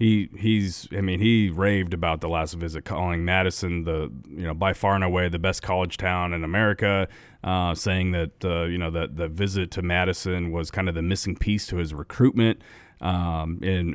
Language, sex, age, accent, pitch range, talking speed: English, male, 30-49, American, 90-105 Hz, 200 wpm